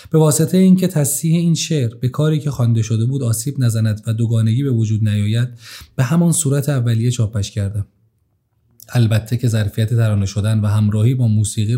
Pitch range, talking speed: 115-140 Hz, 175 wpm